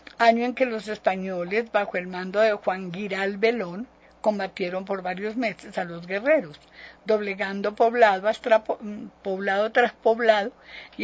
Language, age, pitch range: Spanish, 50-69, 185-230 Hz